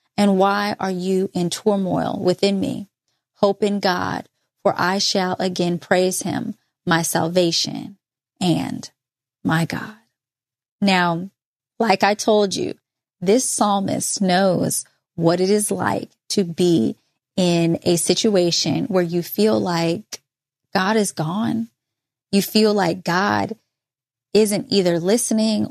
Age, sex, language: 20-39, female, English